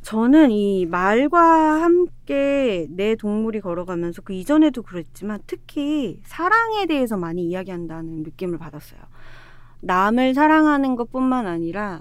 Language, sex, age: Korean, female, 30-49